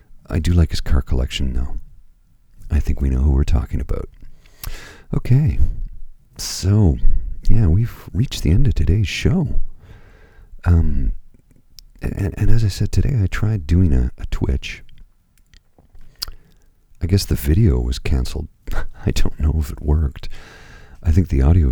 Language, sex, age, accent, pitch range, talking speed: English, male, 40-59, American, 65-90 Hz, 150 wpm